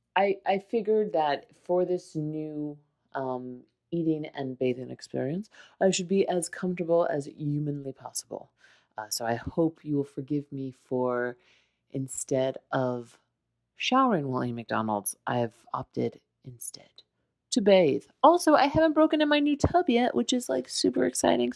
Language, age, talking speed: English, 30-49, 150 wpm